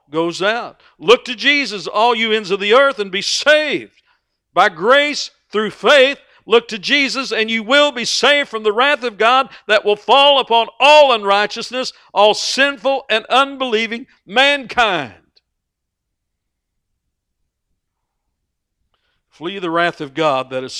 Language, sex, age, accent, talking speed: English, male, 60-79, American, 140 wpm